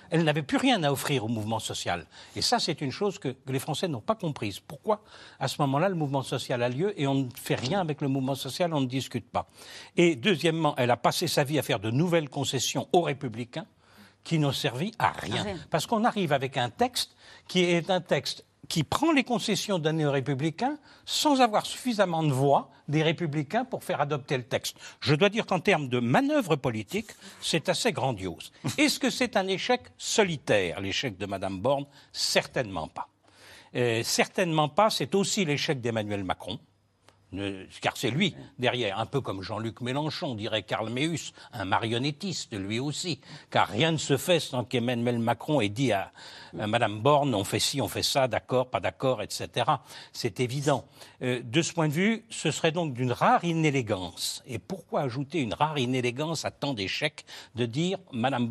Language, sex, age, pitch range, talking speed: French, male, 60-79, 120-170 Hz, 190 wpm